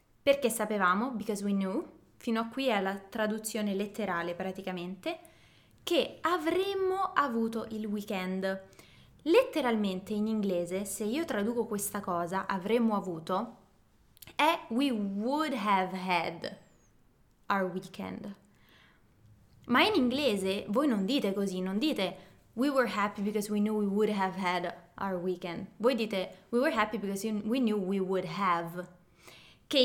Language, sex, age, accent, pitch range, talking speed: Italian, female, 20-39, native, 195-245 Hz, 135 wpm